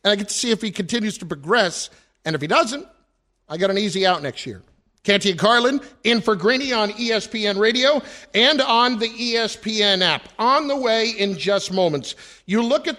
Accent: American